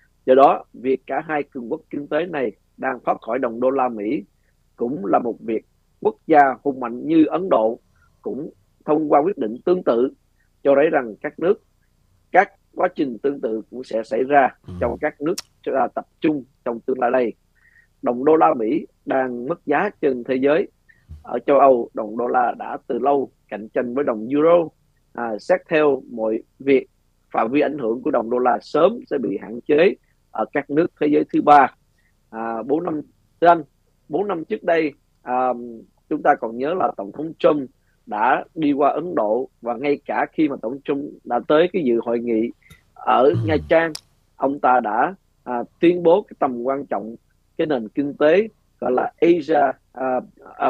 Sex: male